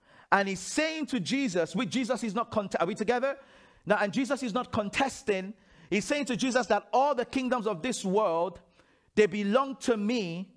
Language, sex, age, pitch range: English, male, 50-69, 180-245 Hz